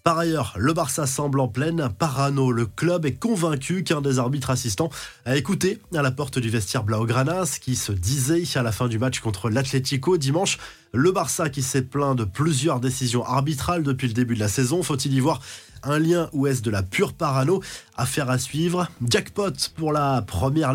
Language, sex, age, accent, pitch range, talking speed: French, male, 20-39, French, 125-155 Hz, 195 wpm